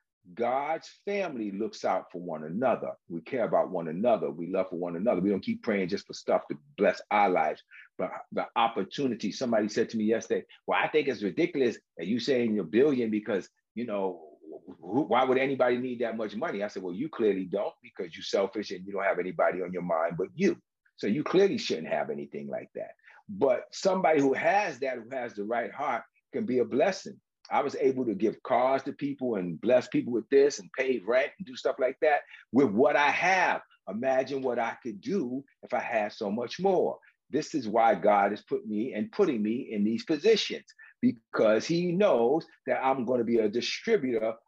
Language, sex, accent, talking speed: English, male, American, 210 wpm